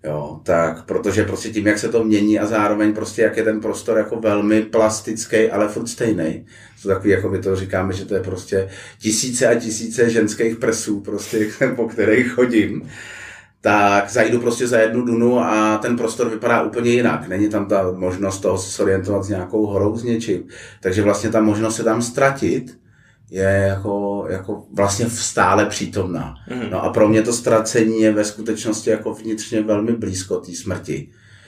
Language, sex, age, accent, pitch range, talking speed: Czech, male, 30-49, native, 95-110 Hz, 170 wpm